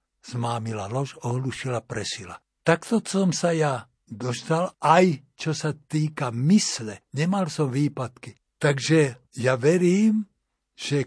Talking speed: 115 wpm